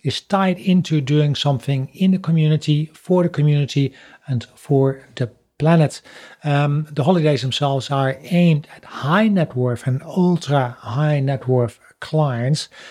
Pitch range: 130-160 Hz